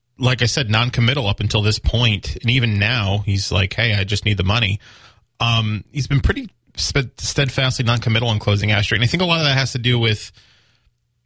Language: English